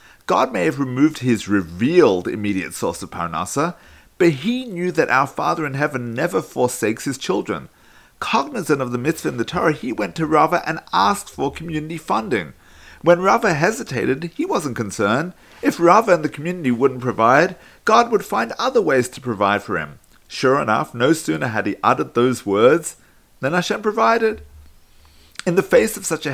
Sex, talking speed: male, 180 wpm